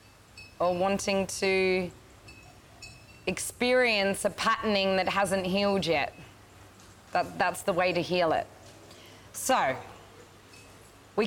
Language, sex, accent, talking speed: English, female, Australian, 95 wpm